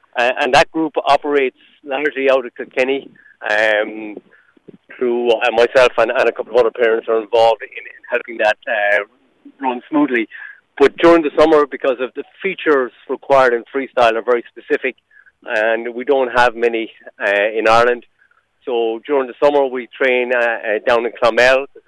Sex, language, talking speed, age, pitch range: male, English, 175 wpm, 50-69, 115-145 Hz